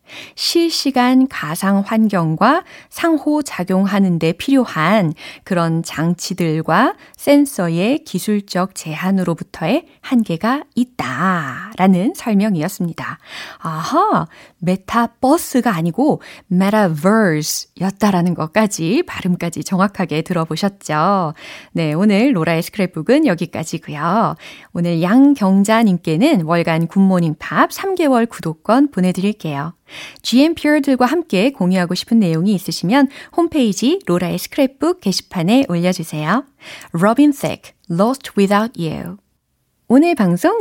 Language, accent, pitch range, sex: Korean, native, 170-255 Hz, female